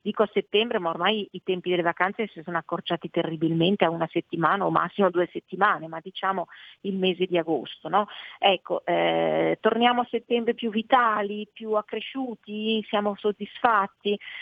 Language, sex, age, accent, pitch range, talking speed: Italian, female, 40-59, native, 185-220 Hz, 160 wpm